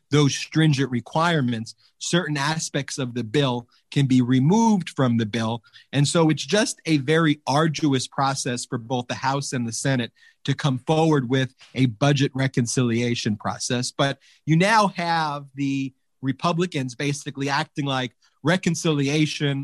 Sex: male